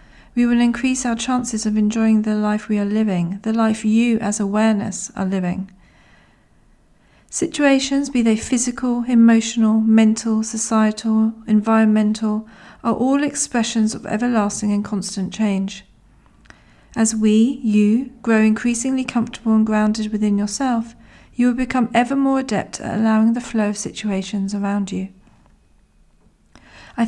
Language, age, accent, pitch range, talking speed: English, 40-59, British, 205-240 Hz, 135 wpm